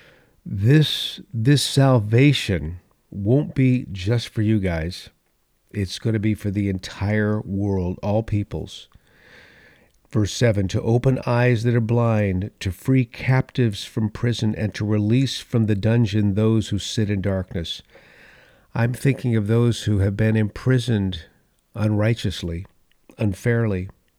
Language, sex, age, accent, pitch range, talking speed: English, male, 50-69, American, 95-115 Hz, 130 wpm